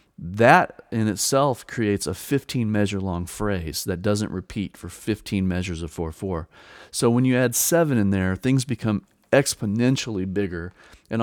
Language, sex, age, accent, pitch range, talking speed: English, male, 40-59, American, 95-115 Hz, 145 wpm